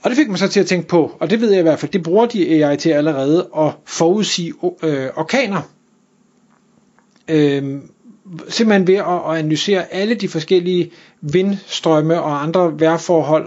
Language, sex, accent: Danish, male, native